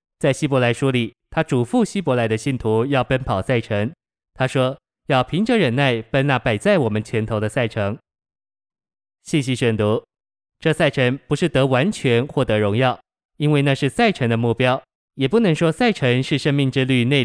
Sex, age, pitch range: male, 20-39, 120-150 Hz